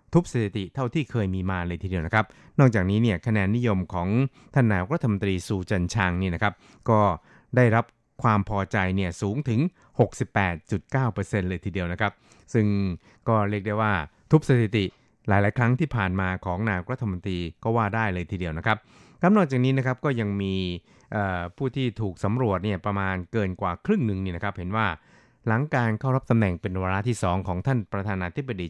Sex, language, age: male, Thai, 20-39